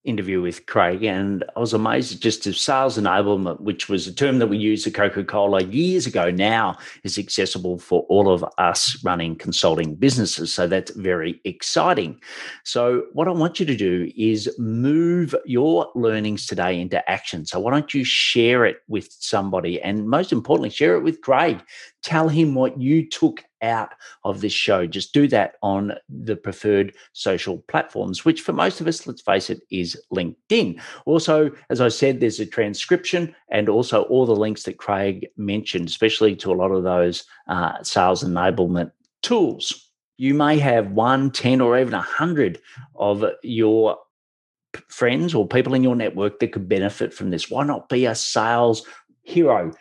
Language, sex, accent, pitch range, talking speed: English, male, Australian, 100-135 Hz, 175 wpm